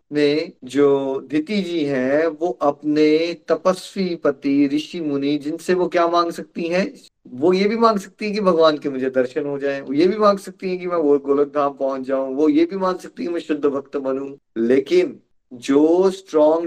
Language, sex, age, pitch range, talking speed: Hindi, male, 20-39, 135-180 Hz, 200 wpm